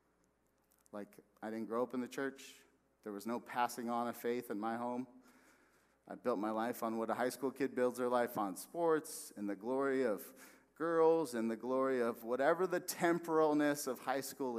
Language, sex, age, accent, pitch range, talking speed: English, male, 40-59, American, 110-135 Hz, 195 wpm